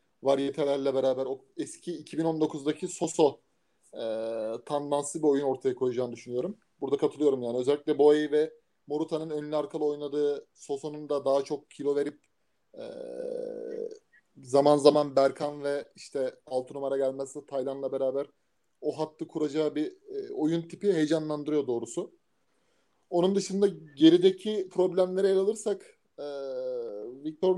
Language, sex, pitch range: Turkish, male, 145-185 Hz